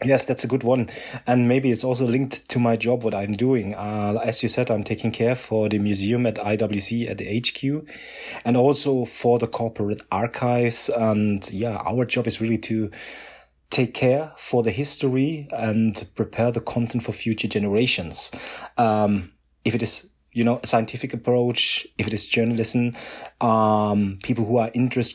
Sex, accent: male, German